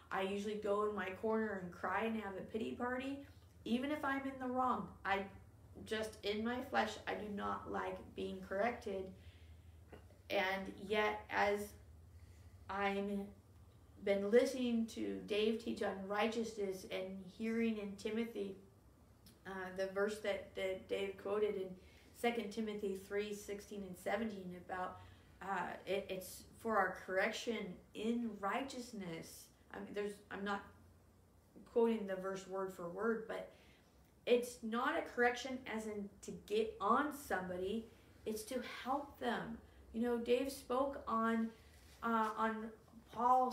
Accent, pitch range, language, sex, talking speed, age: American, 190-240 Hz, English, female, 140 wpm, 30-49